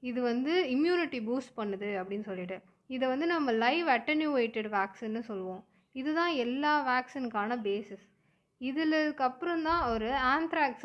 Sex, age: female, 20-39